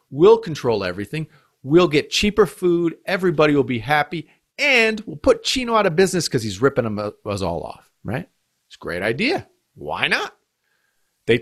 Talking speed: 175 wpm